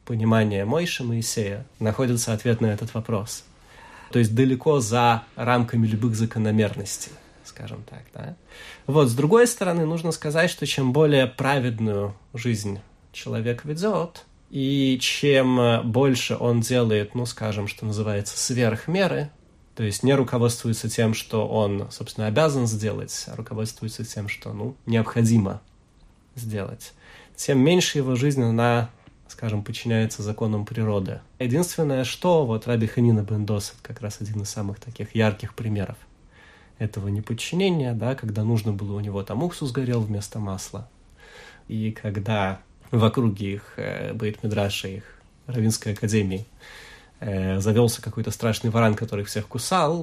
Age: 30-49